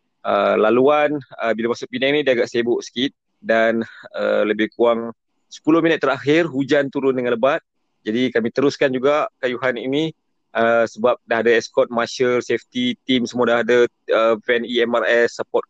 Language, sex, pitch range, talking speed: Malay, male, 110-130 Hz, 170 wpm